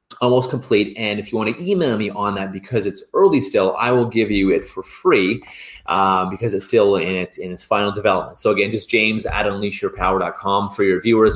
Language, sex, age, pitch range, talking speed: English, male, 30-49, 105-130 Hz, 215 wpm